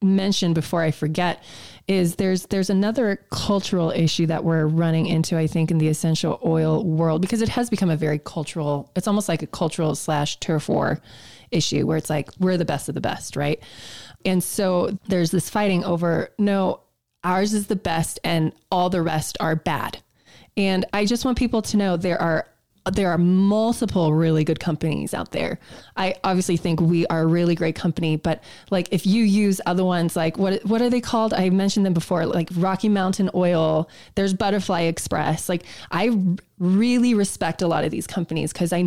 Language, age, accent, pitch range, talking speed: English, 20-39, American, 160-200 Hz, 195 wpm